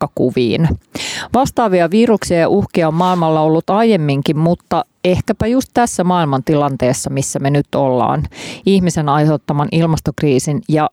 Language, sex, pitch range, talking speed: Finnish, female, 145-185 Hz, 125 wpm